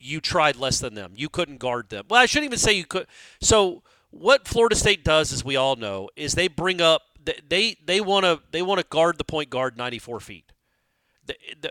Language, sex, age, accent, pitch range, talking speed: English, male, 40-59, American, 140-195 Hz, 225 wpm